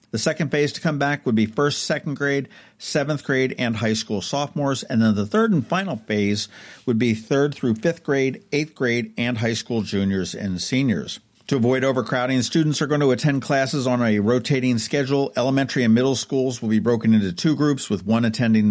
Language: English